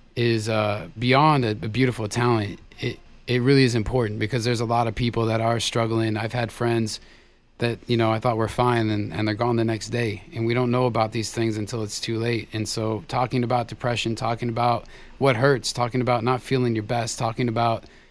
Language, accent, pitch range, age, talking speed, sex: English, American, 110-120 Hz, 30-49, 220 wpm, male